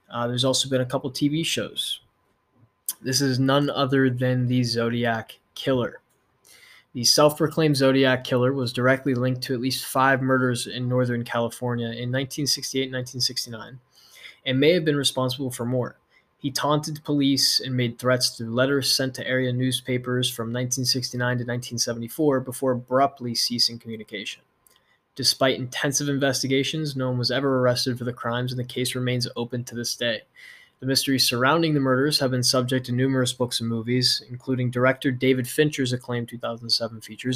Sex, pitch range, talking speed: male, 120-135 Hz, 160 wpm